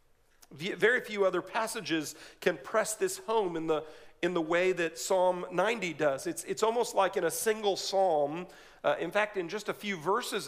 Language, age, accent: English, 40-59, American